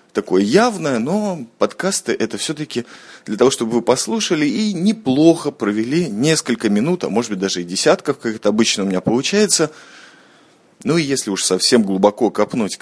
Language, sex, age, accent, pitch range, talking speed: Russian, male, 20-39, native, 115-175 Hz, 165 wpm